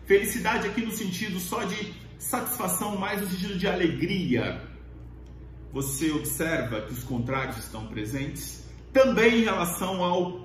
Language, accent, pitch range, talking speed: English, Brazilian, 120-195 Hz, 130 wpm